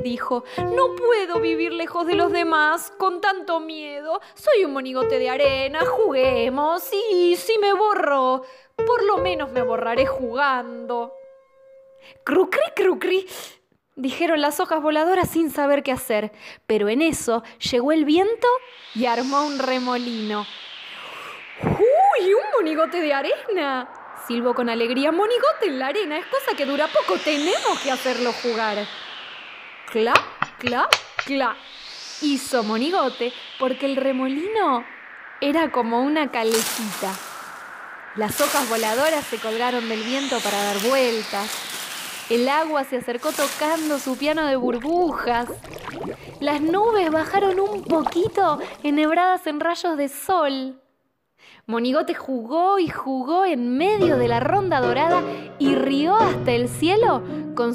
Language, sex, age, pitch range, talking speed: Spanish, female, 20-39, 245-340 Hz, 130 wpm